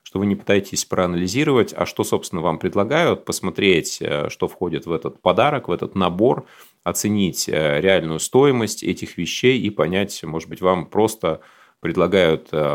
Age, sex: 30-49, male